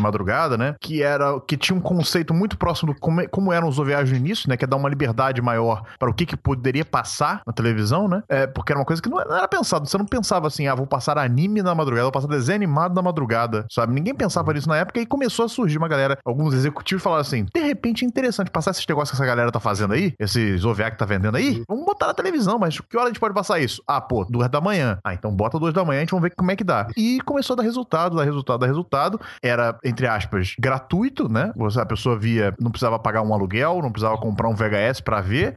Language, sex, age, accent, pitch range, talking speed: Portuguese, male, 20-39, Brazilian, 120-180 Hz, 260 wpm